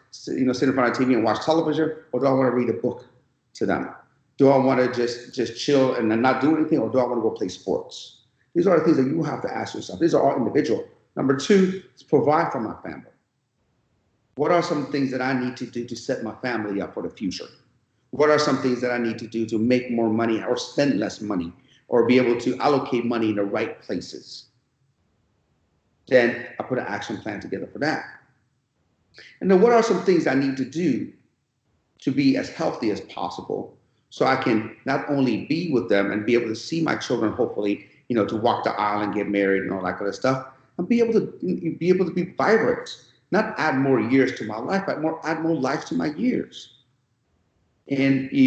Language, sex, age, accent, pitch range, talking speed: English, male, 40-59, American, 120-155 Hz, 230 wpm